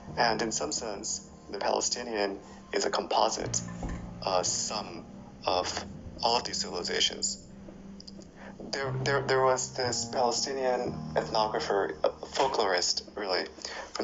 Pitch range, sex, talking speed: 85-120 Hz, male, 115 wpm